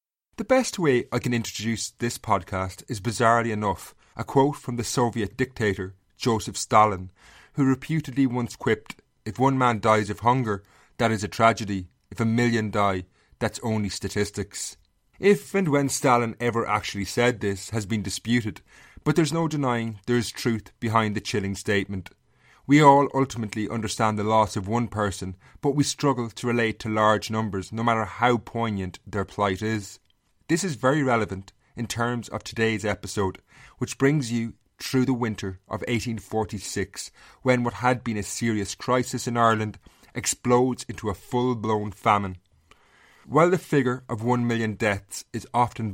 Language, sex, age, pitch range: English, male, 30-49, 105-125 Hz